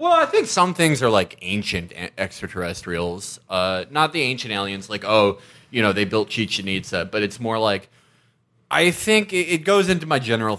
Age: 20-39